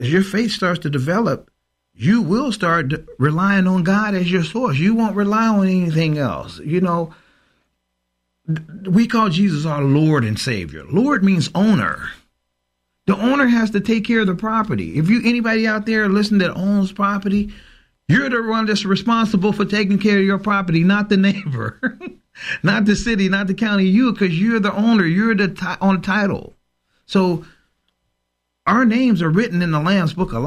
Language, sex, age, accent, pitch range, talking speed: English, male, 40-59, American, 145-200 Hz, 180 wpm